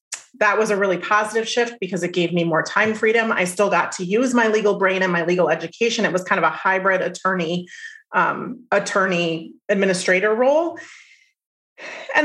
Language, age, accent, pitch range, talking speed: English, 30-49, American, 180-225 Hz, 180 wpm